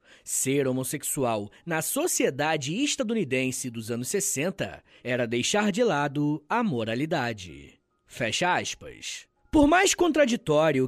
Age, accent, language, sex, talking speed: 20-39, Brazilian, Portuguese, male, 105 wpm